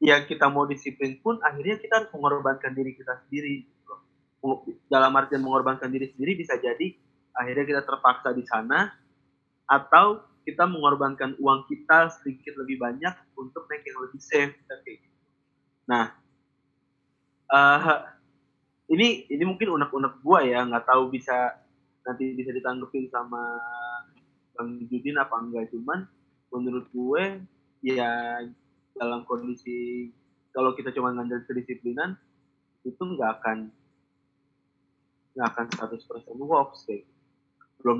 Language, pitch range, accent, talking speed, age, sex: Indonesian, 120-145 Hz, native, 120 wpm, 20-39, male